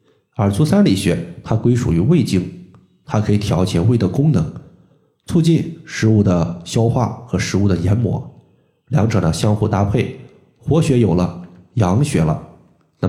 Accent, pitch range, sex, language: native, 95-130 Hz, male, Chinese